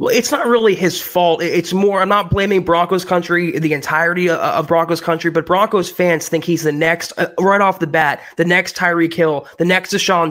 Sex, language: male, English